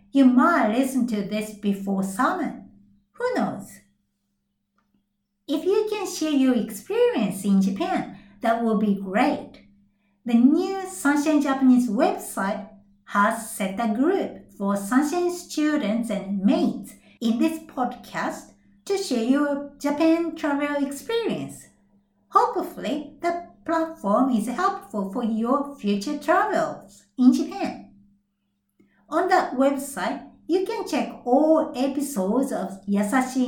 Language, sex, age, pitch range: Japanese, female, 60-79, 205-305 Hz